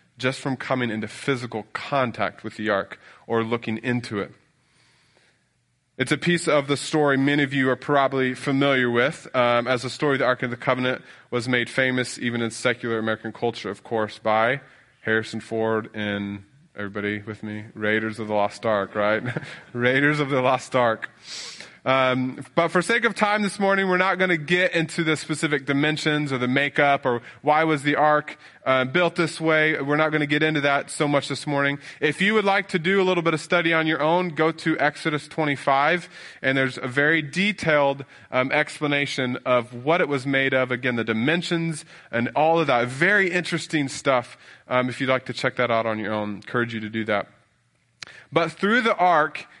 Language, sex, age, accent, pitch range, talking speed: English, male, 20-39, American, 120-155 Hz, 200 wpm